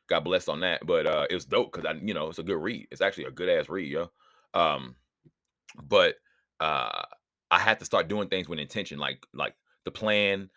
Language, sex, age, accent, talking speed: English, male, 30-49, American, 210 wpm